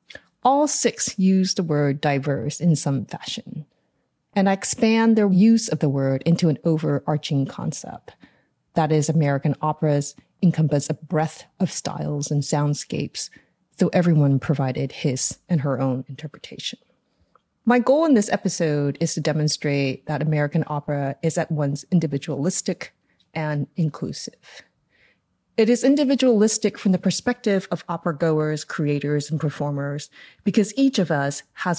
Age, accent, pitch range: 30-49, American, 145-185 Hz